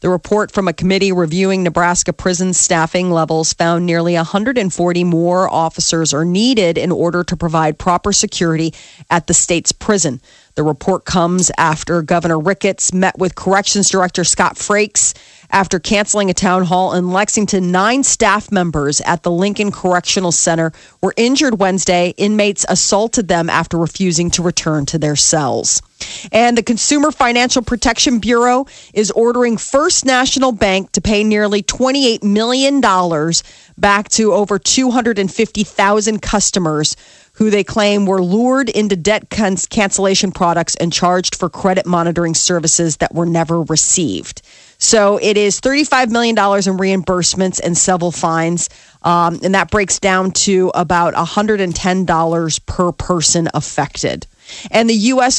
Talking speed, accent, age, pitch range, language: 140 wpm, American, 40-59, 170-210 Hz, English